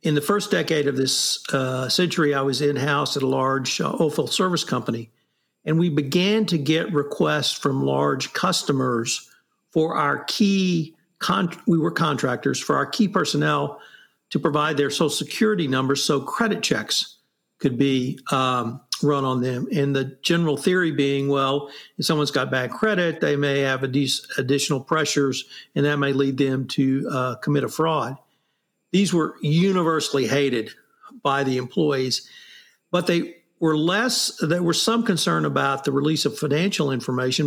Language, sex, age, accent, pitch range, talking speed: English, male, 50-69, American, 135-165 Hz, 160 wpm